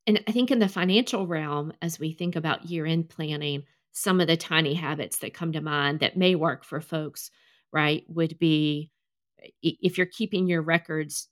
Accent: American